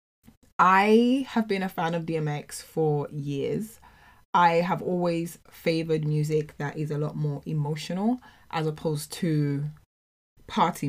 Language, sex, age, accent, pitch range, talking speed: English, female, 20-39, British, 150-175 Hz, 130 wpm